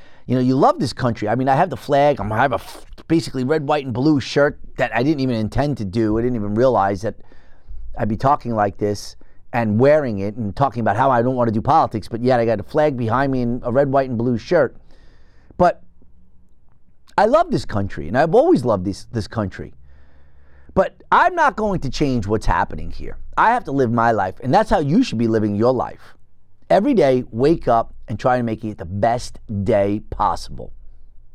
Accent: American